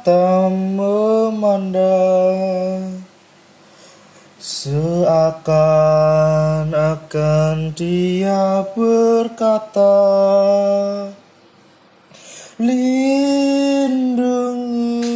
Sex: male